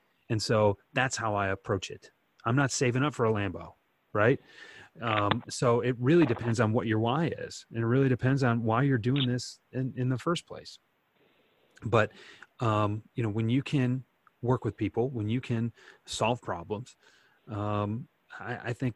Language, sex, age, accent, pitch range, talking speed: English, male, 30-49, American, 110-140 Hz, 185 wpm